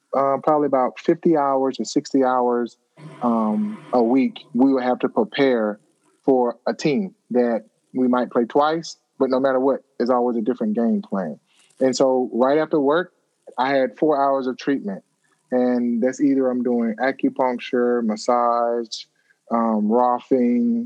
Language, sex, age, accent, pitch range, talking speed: English, male, 20-39, American, 120-145 Hz, 155 wpm